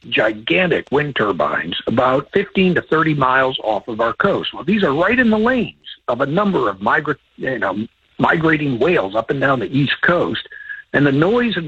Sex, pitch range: male, 130-185 Hz